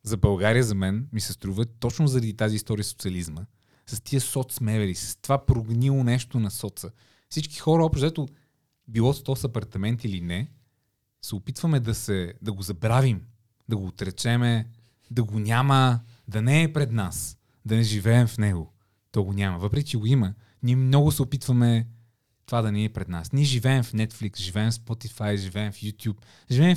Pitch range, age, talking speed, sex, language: 105-130 Hz, 20-39, 180 wpm, male, Bulgarian